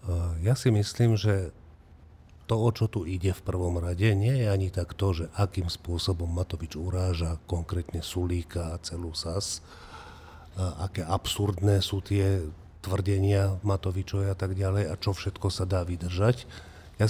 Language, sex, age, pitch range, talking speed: Slovak, male, 40-59, 90-105 Hz, 155 wpm